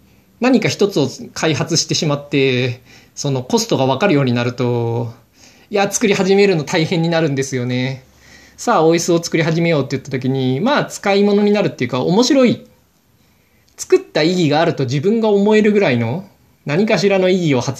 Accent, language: native, Japanese